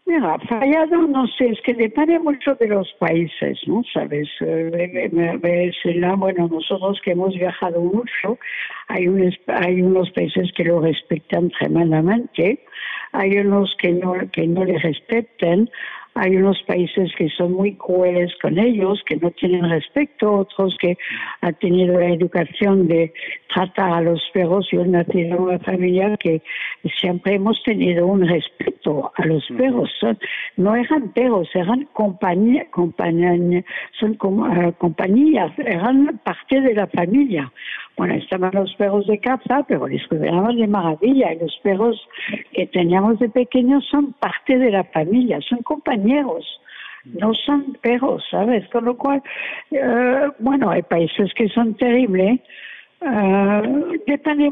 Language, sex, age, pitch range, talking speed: Spanish, female, 60-79, 180-245 Hz, 135 wpm